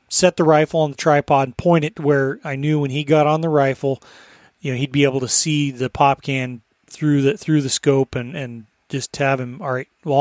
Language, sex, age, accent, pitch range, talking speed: English, male, 30-49, American, 125-150 Hz, 245 wpm